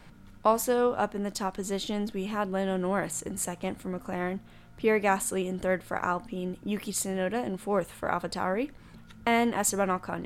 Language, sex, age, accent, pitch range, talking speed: English, female, 10-29, American, 185-225 Hz, 170 wpm